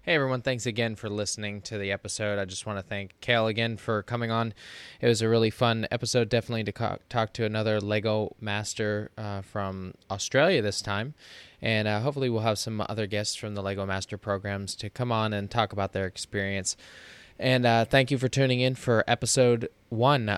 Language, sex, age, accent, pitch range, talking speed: English, male, 20-39, American, 105-125 Hz, 200 wpm